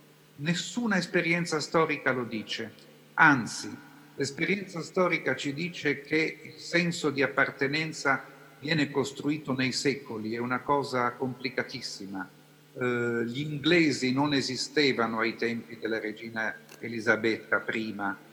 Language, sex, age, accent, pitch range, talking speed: Italian, male, 50-69, native, 115-145 Hz, 110 wpm